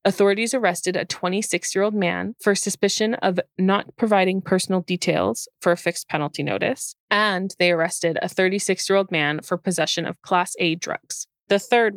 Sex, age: female, 20-39